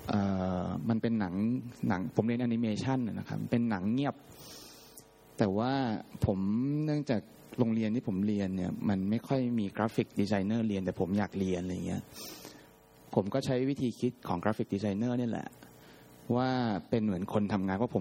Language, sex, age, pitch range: English, male, 20-39, 95-120 Hz